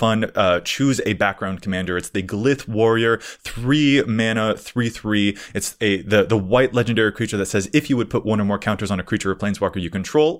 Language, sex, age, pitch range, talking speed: English, male, 20-39, 115-155 Hz, 220 wpm